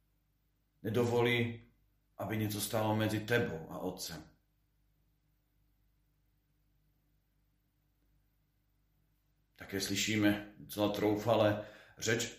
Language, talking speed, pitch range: Slovak, 60 wpm, 105-125 Hz